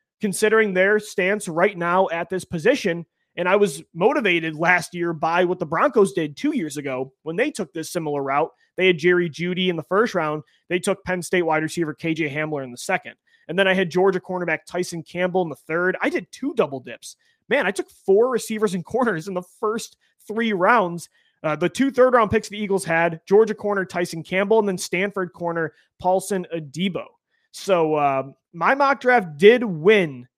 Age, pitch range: 30-49, 160-200 Hz